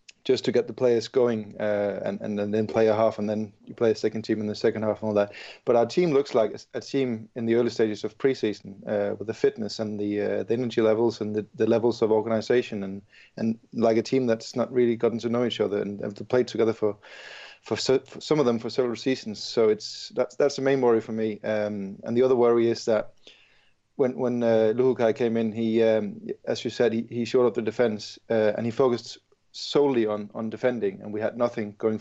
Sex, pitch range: male, 110-125 Hz